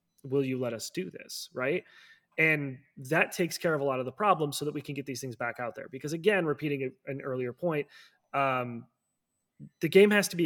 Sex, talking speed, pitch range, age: male, 230 wpm, 130-155 Hz, 20-39